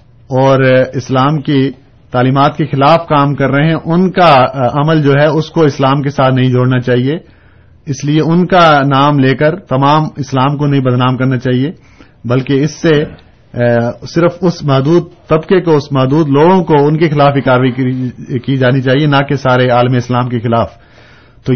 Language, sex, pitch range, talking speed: Urdu, male, 125-140 Hz, 180 wpm